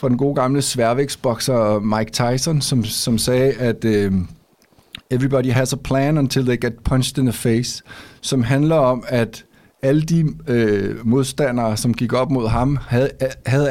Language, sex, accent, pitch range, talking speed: Danish, male, native, 115-145 Hz, 160 wpm